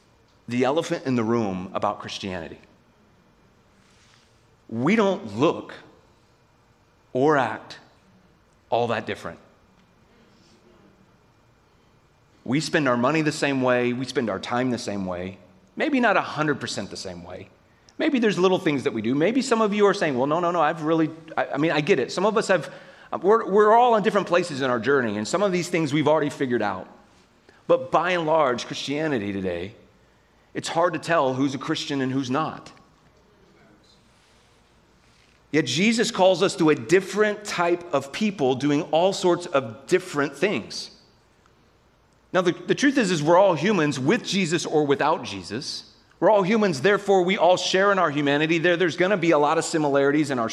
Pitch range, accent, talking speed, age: 120-180 Hz, American, 175 wpm, 30-49